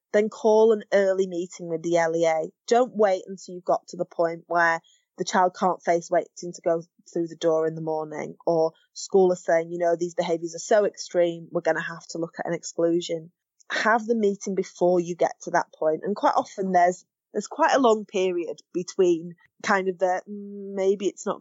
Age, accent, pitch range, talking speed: 20-39, British, 170-205 Hz, 210 wpm